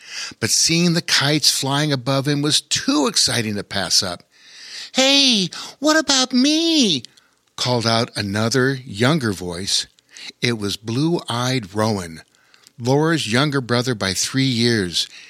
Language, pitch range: English, 110-150 Hz